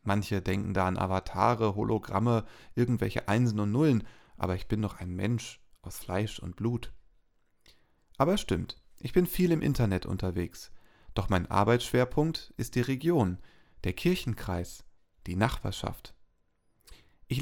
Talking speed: 140 wpm